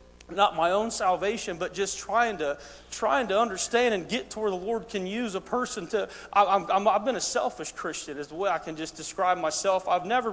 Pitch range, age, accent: 235-315 Hz, 40-59, American